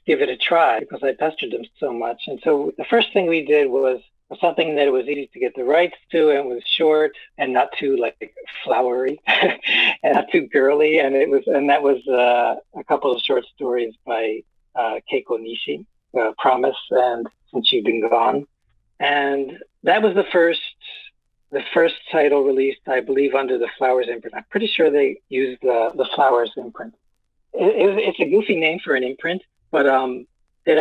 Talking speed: 190 wpm